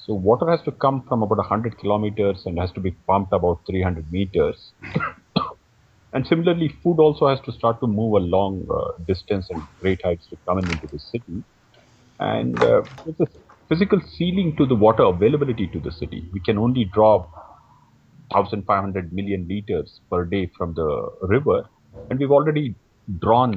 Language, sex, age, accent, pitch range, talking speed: English, male, 40-59, Indian, 95-125 Hz, 175 wpm